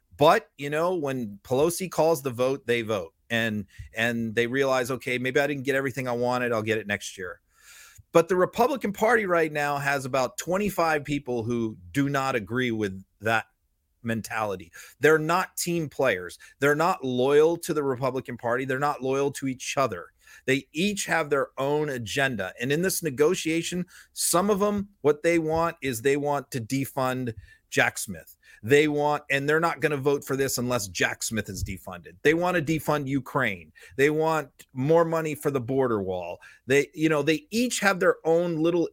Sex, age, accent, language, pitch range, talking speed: male, 40-59, American, English, 125-160 Hz, 185 wpm